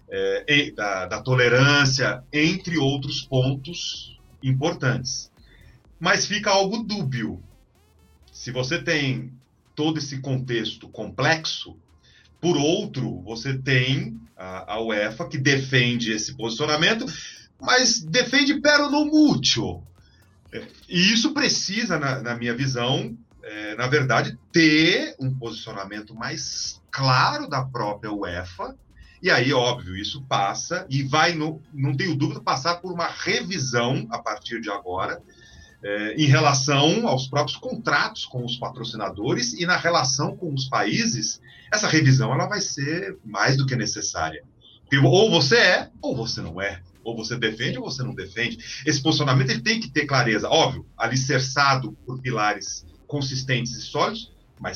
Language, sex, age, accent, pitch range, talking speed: Portuguese, male, 30-49, Brazilian, 115-155 Hz, 130 wpm